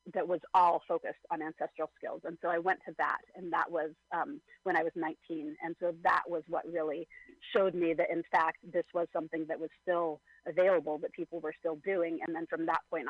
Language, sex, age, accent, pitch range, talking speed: English, female, 30-49, American, 160-175 Hz, 225 wpm